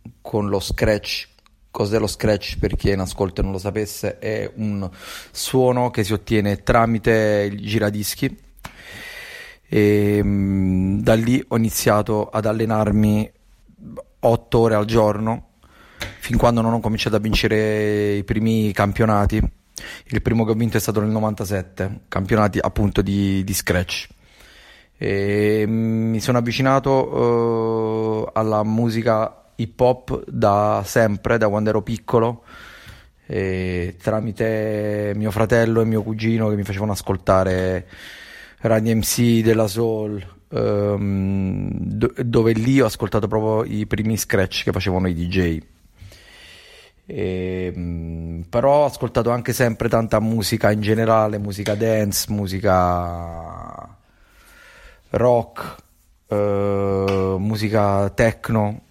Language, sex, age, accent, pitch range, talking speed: Italian, male, 30-49, native, 100-115 Hz, 120 wpm